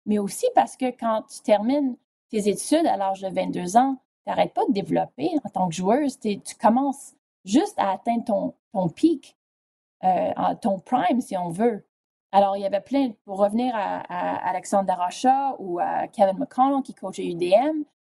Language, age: French, 30-49